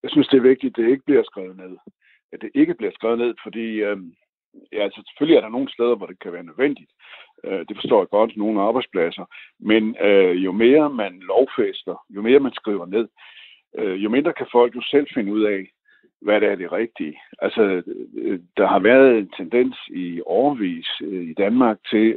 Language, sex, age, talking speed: Danish, male, 60-79, 205 wpm